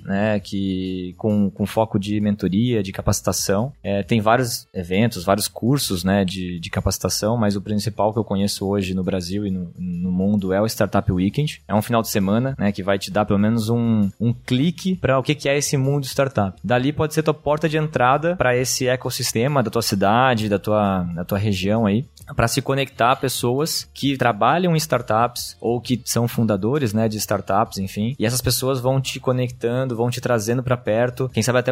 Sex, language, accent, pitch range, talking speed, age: male, Portuguese, Brazilian, 105-130 Hz, 205 wpm, 20-39